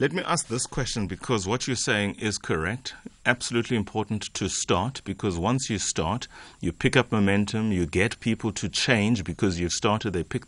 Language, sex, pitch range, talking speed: English, male, 90-115 Hz, 190 wpm